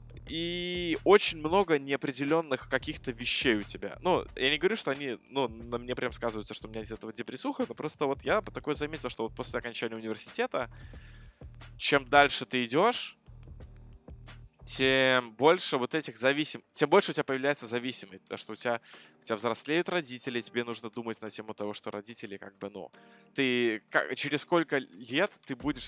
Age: 20-39